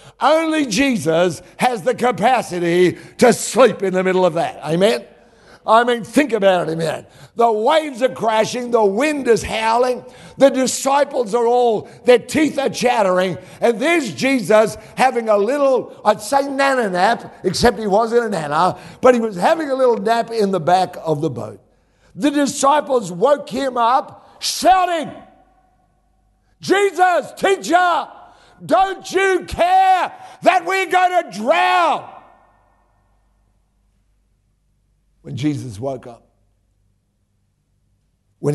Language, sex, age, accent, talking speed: English, male, 60-79, American, 130 wpm